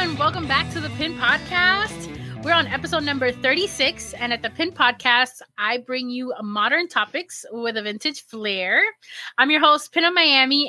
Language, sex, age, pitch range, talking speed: English, female, 20-39, 235-295 Hz, 180 wpm